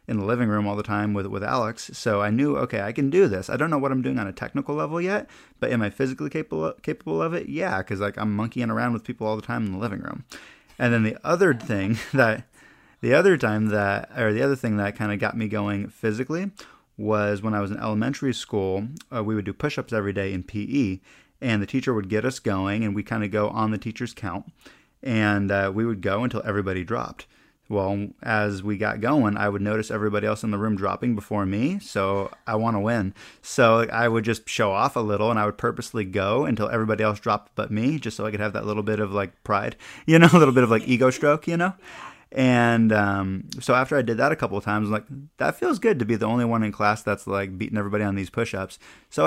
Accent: American